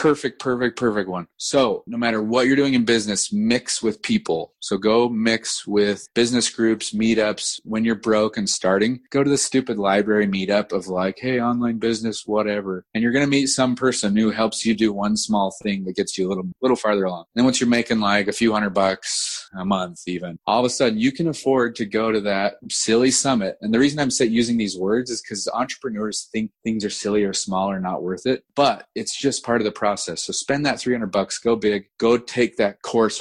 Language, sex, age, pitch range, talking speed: English, male, 30-49, 95-120 Hz, 225 wpm